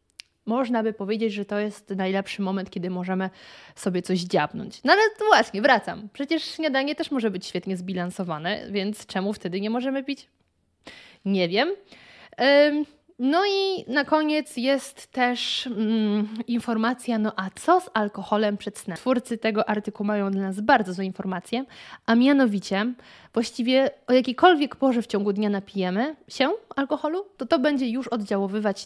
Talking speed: 150 wpm